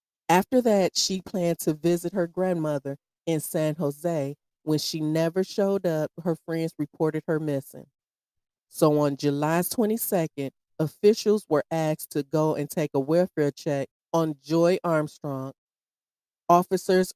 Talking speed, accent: 135 wpm, American